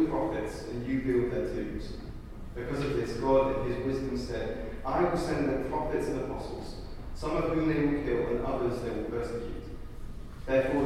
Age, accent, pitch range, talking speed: 30-49, British, 110-135 Hz, 180 wpm